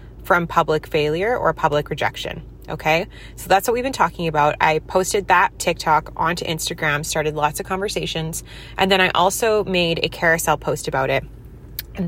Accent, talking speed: American, 175 wpm